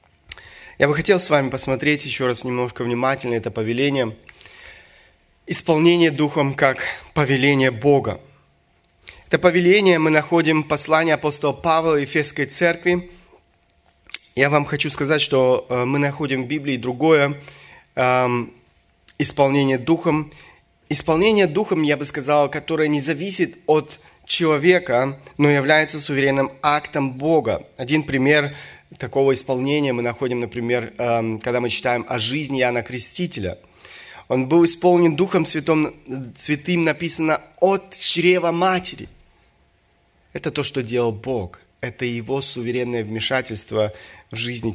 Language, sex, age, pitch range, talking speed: Russian, male, 20-39, 120-155 Hz, 120 wpm